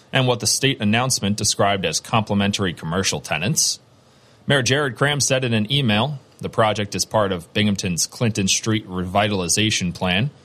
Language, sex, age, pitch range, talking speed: English, male, 30-49, 95-115 Hz, 155 wpm